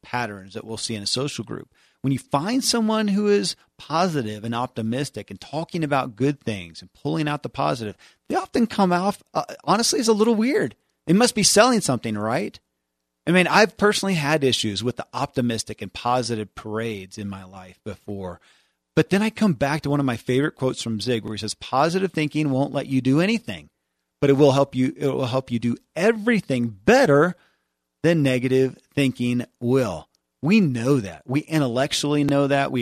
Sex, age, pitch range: male, 40-59, 110-145 Hz